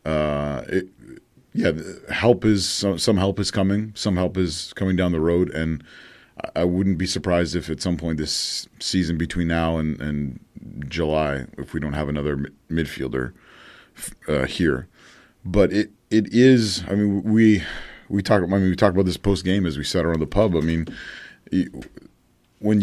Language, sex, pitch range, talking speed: English, male, 80-95 Hz, 175 wpm